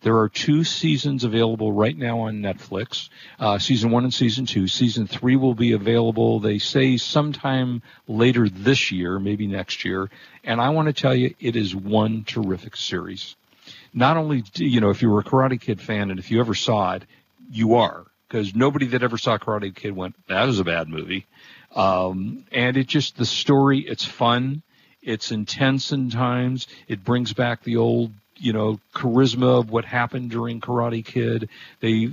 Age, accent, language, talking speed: 50-69, American, English, 185 wpm